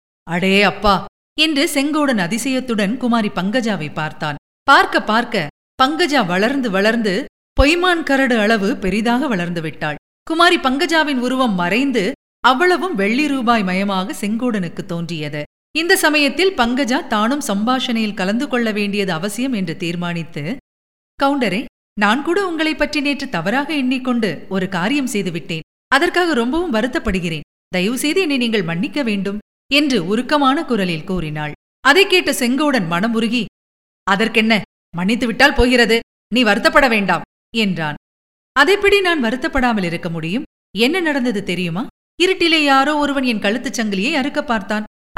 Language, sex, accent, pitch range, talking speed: Tamil, female, native, 200-290 Hz, 120 wpm